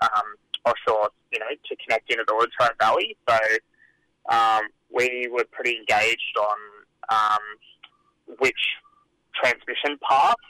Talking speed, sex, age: 125 wpm, male, 20-39